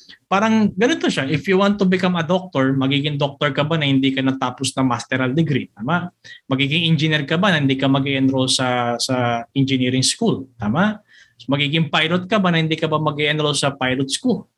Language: Filipino